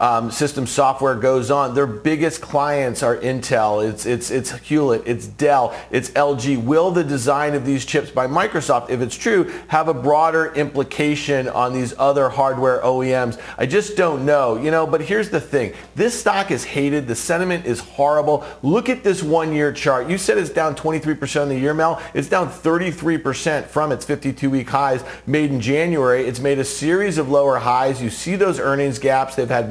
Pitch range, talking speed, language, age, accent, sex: 135-165 Hz, 190 wpm, English, 40-59, American, male